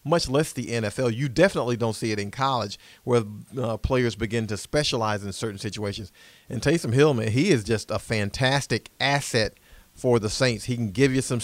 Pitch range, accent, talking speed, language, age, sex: 110-130 Hz, American, 195 wpm, English, 40-59, male